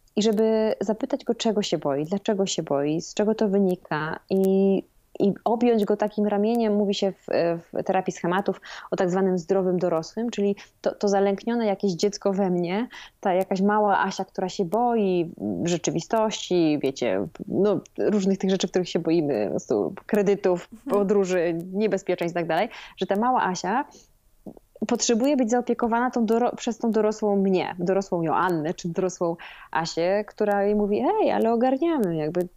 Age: 20-39